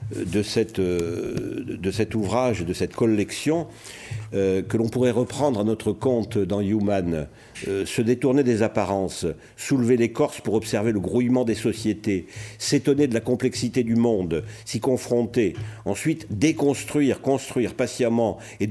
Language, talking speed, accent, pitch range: French, 135 wpm, French, 105-130 Hz